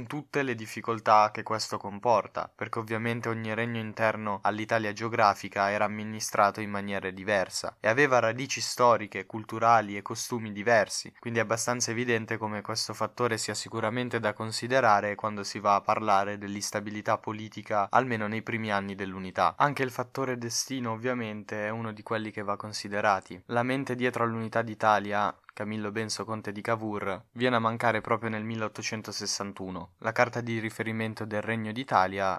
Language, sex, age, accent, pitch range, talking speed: Italian, male, 10-29, native, 105-120 Hz, 155 wpm